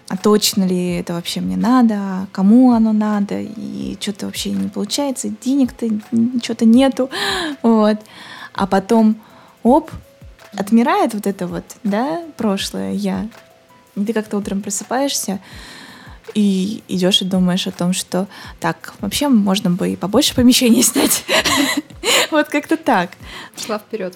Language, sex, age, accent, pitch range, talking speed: Russian, female, 20-39, native, 190-235 Hz, 130 wpm